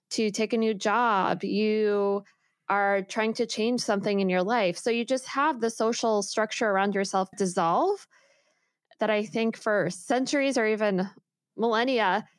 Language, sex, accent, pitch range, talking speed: English, female, American, 190-235 Hz, 155 wpm